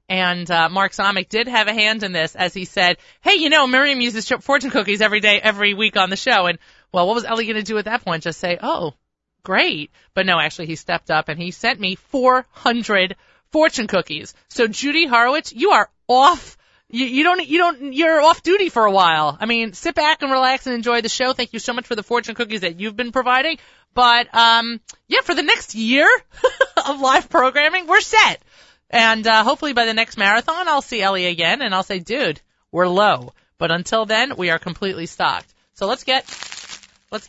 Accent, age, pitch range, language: American, 30-49, 180-260 Hz, English